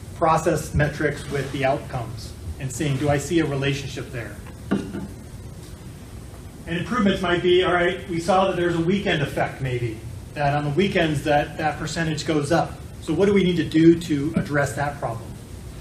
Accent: American